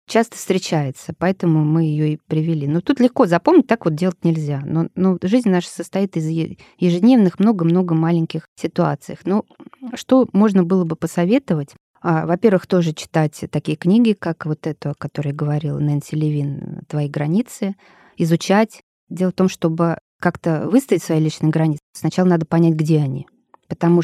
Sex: female